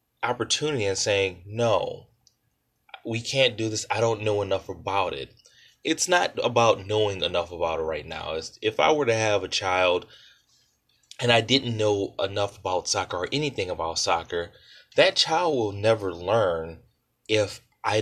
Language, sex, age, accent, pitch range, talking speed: English, male, 20-39, American, 100-125 Hz, 160 wpm